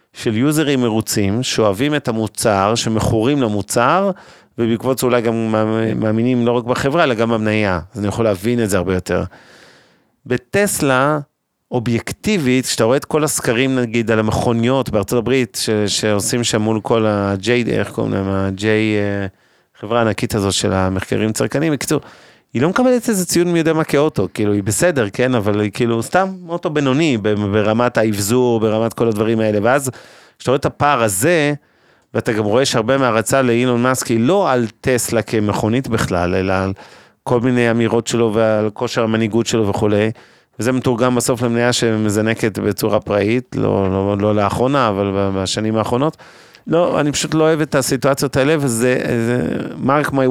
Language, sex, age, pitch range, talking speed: Hebrew, male, 30-49, 110-130 Hz, 160 wpm